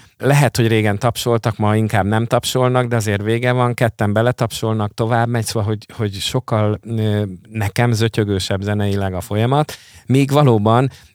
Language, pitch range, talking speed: Hungarian, 100-125 Hz, 145 wpm